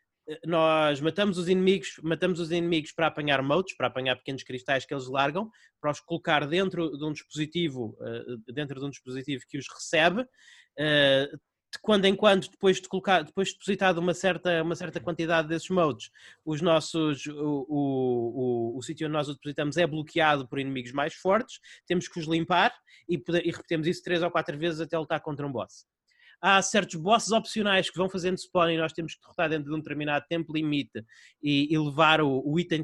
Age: 20-39